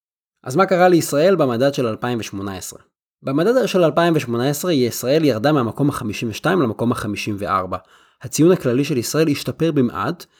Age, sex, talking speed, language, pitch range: 20-39, male, 125 wpm, Hebrew, 120-175 Hz